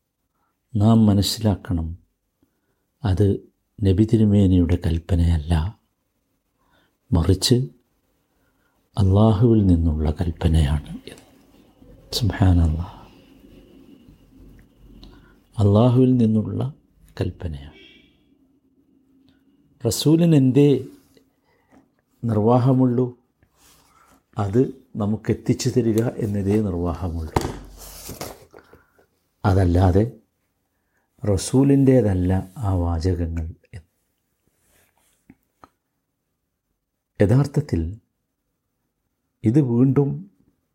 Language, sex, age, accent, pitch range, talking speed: Malayalam, male, 60-79, native, 90-125 Hz, 45 wpm